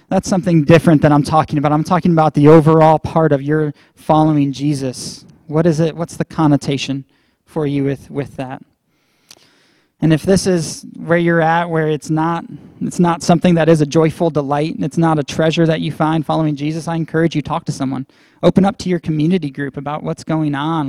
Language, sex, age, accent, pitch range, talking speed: English, male, 20-39, American, 150-170 Hz, 205 wpm